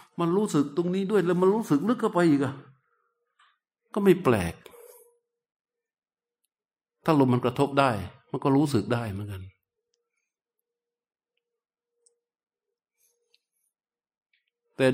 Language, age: Thai, 60-79